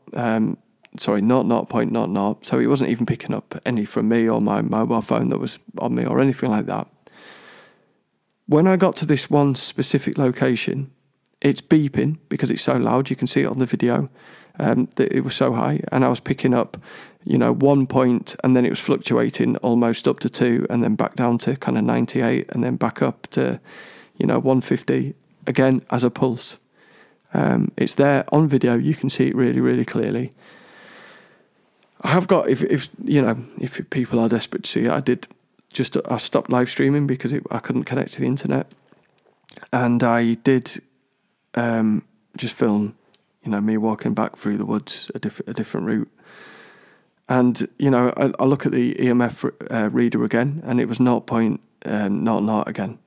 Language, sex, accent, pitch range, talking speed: English, male, British, 115-135 Hz, 200 wpm